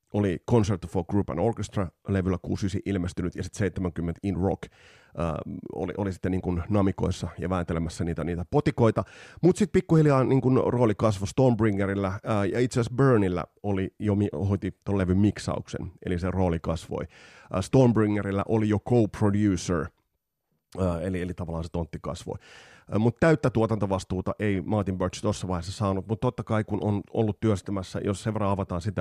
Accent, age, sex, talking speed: native, 30-49, male, 160 wpm